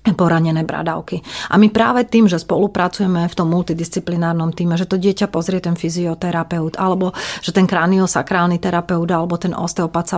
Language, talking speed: Slovak, 160 wpm